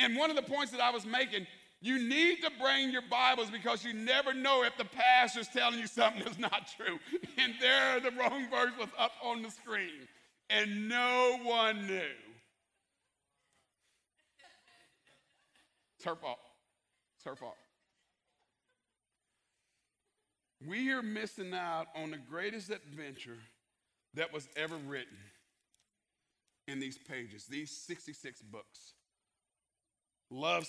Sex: male